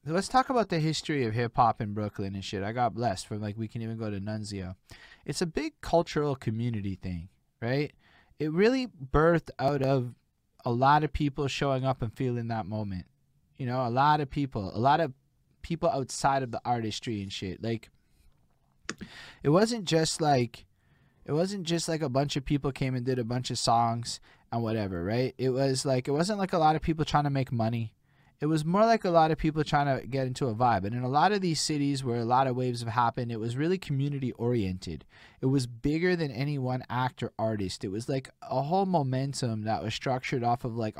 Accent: American